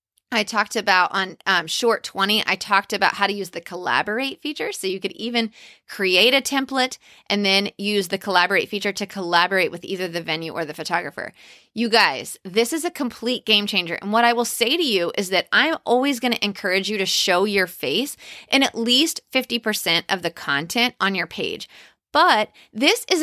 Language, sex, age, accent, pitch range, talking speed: English, female, 30-49, American, 190-245 Hz, 200 wpm